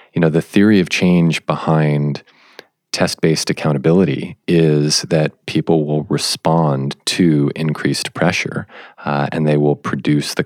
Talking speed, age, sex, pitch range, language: 130 wpm, 40-59, male, 70-80 Hz, English